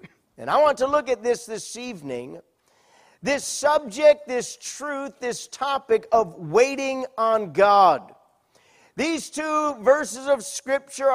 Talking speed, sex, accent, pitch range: 130 wpm, male, American, 235-290 Hz